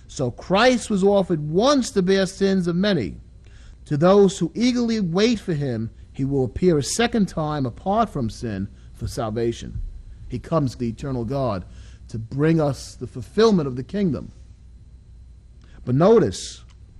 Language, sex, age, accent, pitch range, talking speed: English, male, 40-59, American, 115-185 Hz, 155 wpm